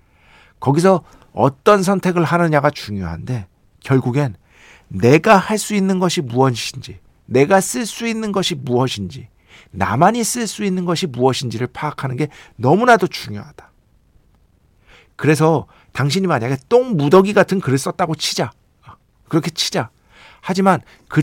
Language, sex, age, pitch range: Korean, male, 50-69, 115-190 Hz